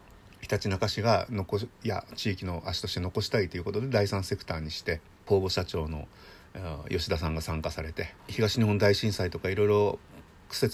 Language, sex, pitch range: Japanese, male, 90-115 Hz